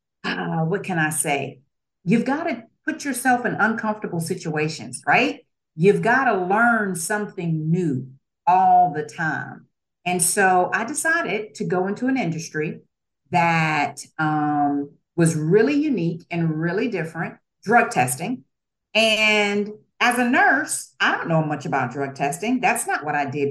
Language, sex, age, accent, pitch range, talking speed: English, female, 50-69, American, 155-230 Hz, 150 wpm